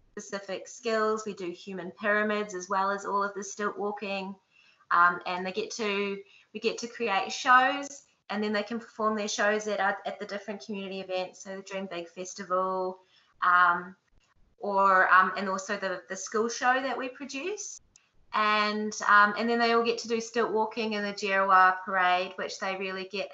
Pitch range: 175-205 Hz